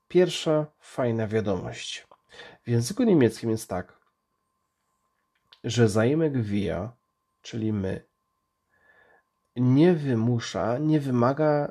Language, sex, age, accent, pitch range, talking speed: Polish, male, 40-59, native, 110-140 Hz, 85 wpm